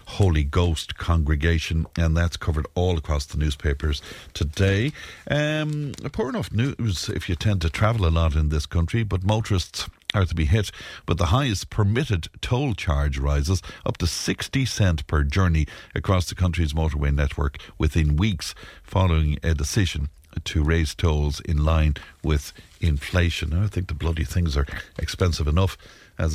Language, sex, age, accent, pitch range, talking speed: English, male, 60-79, Irish, 75-95 Hz, 160 wpm